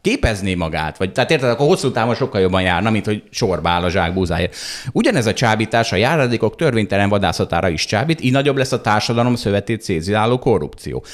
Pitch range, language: 95-130 Hz, Hungarian